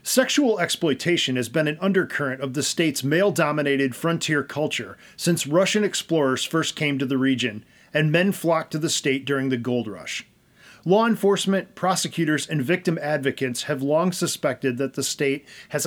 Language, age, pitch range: English, 40-59, 135-175 Hz